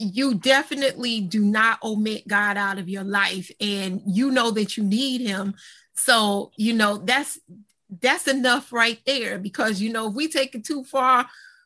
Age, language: 30-49, English